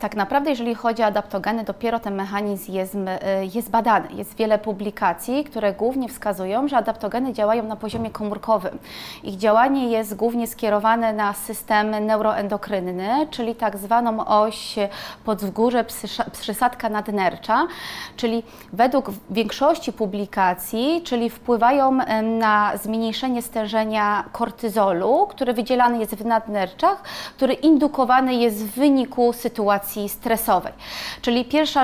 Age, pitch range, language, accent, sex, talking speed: 30-49, 215-240 Hz, Polish, native, female, 120 wpm